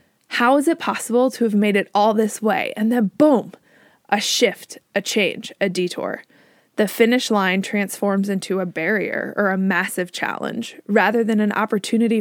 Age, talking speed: 20-39, 170 wpm